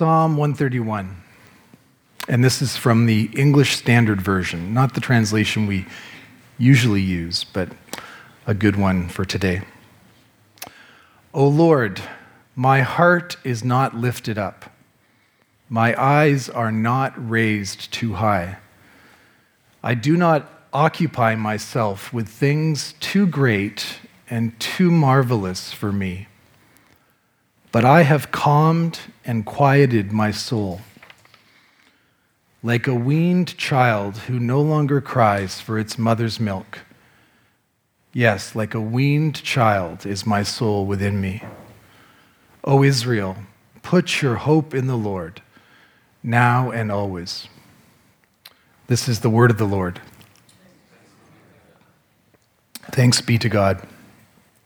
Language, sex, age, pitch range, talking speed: English, male, 40-59, 105-135 Hz, 115 wpm